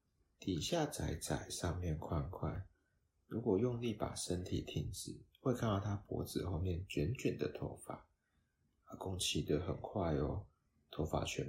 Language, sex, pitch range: Chinese, male, 85-105 Hz